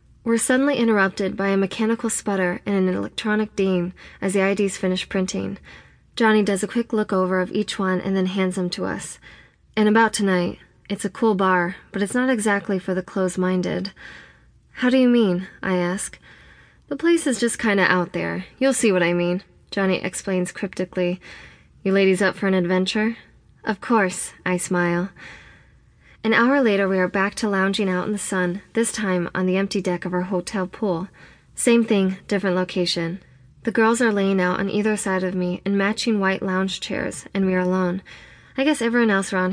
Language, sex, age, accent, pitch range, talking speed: English, female, 20-39, American, 185-215 Hz, 195 wpm